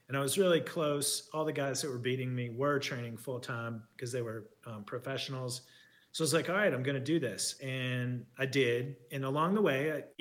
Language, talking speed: English, 235 wpm